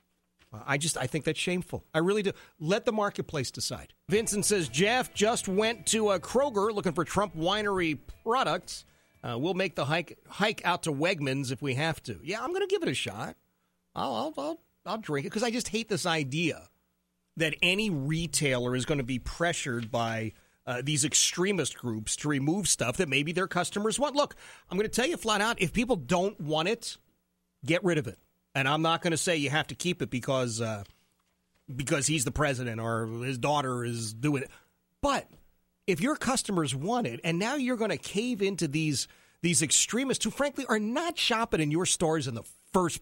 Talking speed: 205 wpm